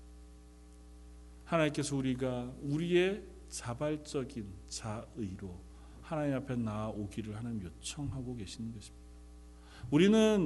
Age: 40-59